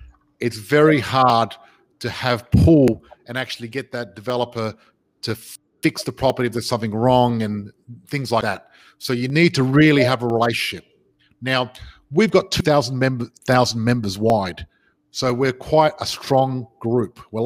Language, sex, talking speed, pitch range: English, male, 160 wpm, 115-140 Hz